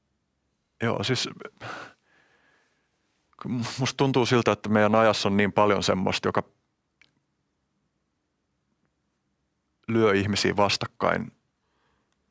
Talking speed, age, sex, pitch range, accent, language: 80 wpm, 30-49, male, 95-115 Hz, native, Finnish